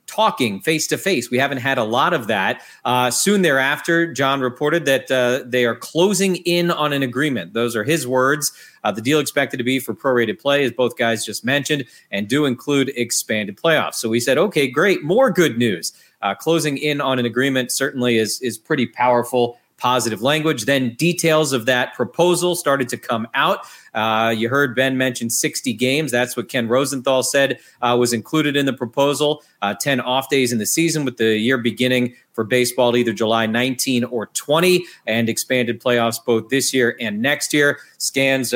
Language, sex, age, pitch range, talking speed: English, male, 30-49, 120-150 Hz, 195 wpm